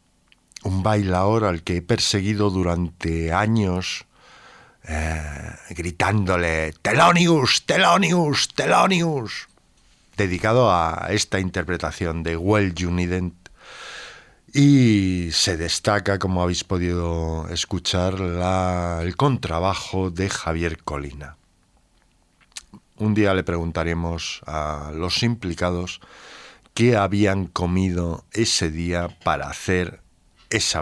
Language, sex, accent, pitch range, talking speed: Spanish, male, Spanish, 85-105 Hz, 95 wpm